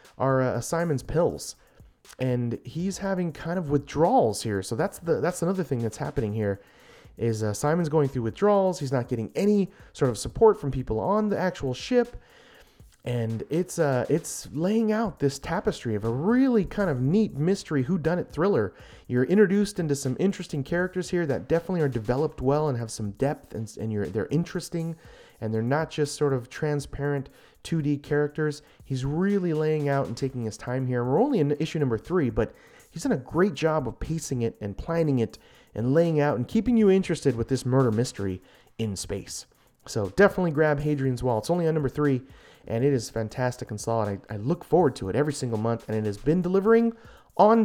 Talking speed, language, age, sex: 200 wpm, English, 30-49, male